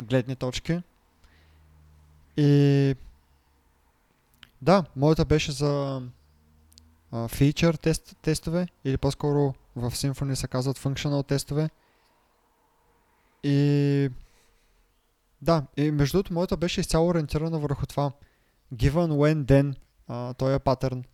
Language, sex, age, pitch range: Bulgarian, male, 20-39, 125-145 Hz